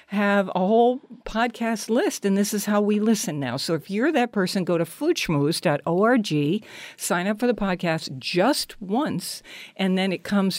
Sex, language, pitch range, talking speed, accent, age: female, English, 165-225 Hz, 175 wpm, American, 60-79